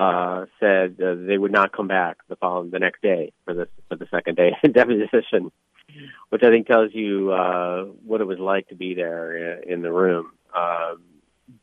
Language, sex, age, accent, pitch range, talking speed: English, male, 30-49, American, 90-100 Hz, 195 wpm